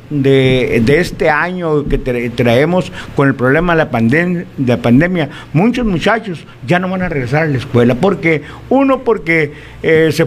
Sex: male